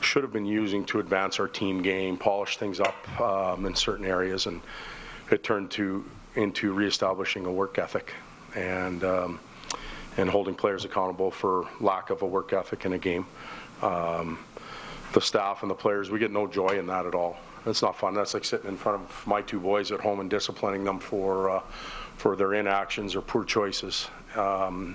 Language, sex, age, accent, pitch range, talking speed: English, male, 40-59, American, 90-100 Hz, 190 wpm